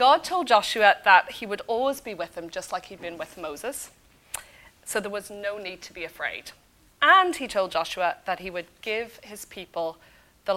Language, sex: English, female